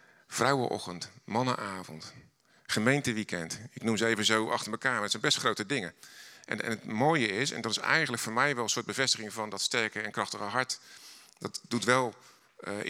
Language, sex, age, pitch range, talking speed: Dutch, male, 50-69, 95-120 Hz, 190 wpm